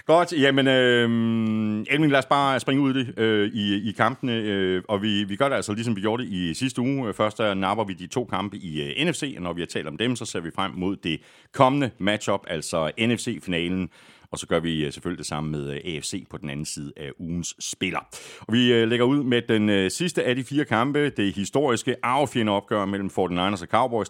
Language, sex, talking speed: Danish, male, 220 wpm